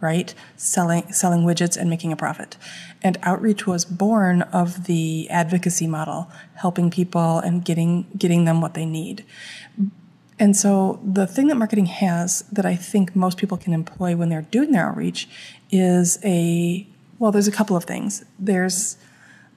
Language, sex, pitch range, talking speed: English, female, 170-195 Hz, 165 wpm